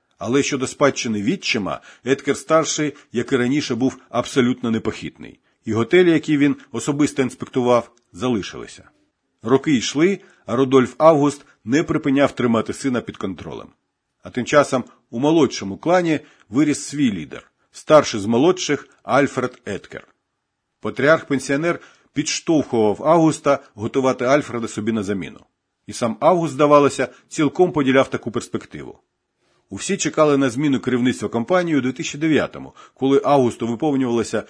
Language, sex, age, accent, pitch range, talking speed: Ukrainian, male, 50-69, native, 120-145 Hz, 125 wpm